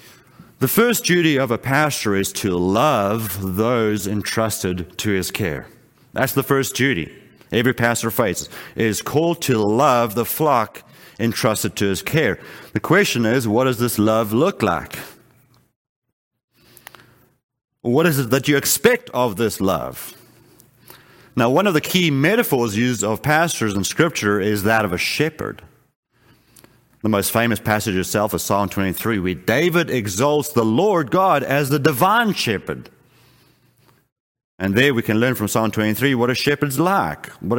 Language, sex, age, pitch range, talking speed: English, male, 30-49, 110-145 Hz, 155 wpm